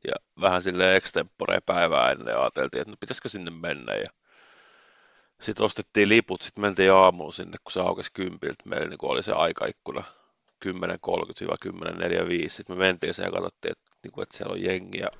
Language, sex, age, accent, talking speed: Finnish, male, 30-49, native, 160 wpm